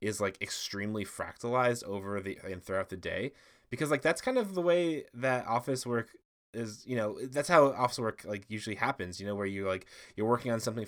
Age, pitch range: 20-39, 90-105 Hz